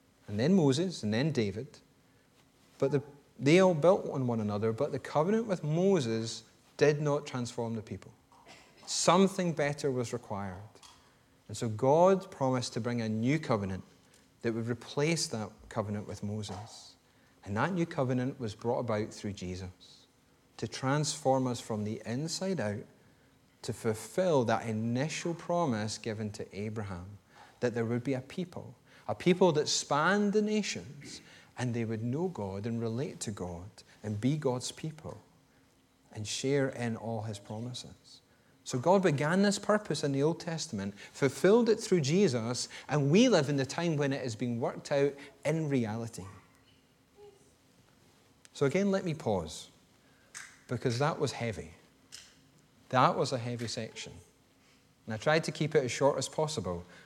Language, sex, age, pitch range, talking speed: English, male, 30-49, 110-150 Hz, 155 wpm